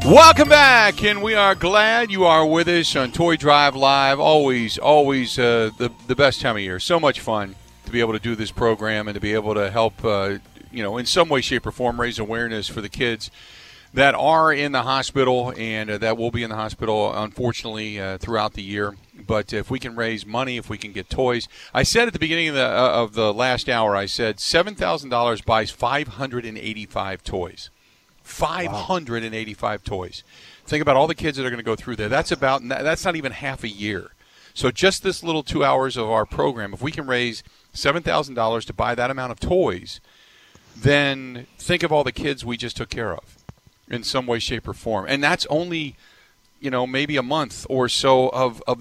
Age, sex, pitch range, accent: 40-59, male, 110-140 Hz, American